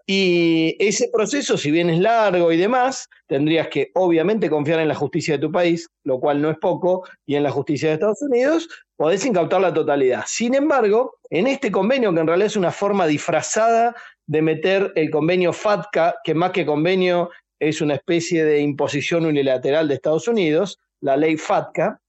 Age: 40-59